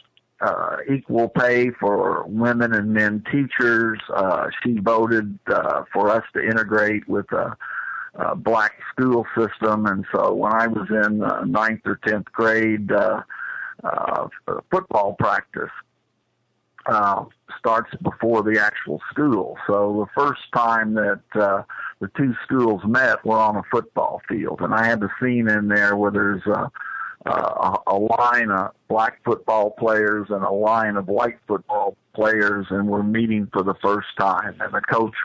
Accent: American